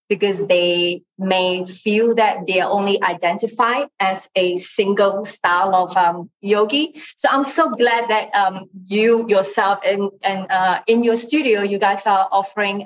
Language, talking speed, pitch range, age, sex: English, 155 wpm, 190-240 Hz, 30-49, female